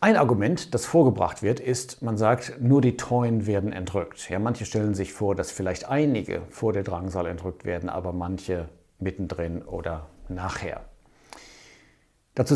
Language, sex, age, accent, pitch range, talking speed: German, male, 60-79, German, 95-125 Hz, 155 wpm